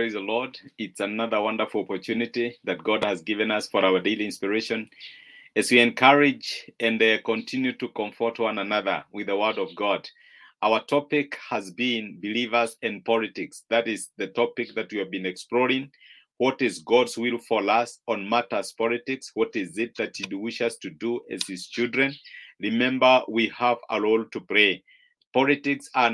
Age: 50-69